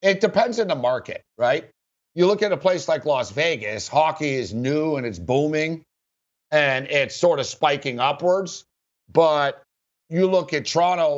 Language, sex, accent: English, male, American